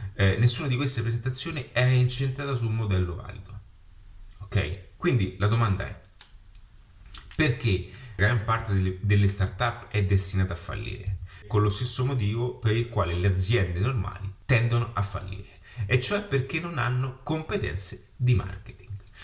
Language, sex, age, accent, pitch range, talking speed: Italian, male, 30-49, native, 95-120 Hz, 155 wpm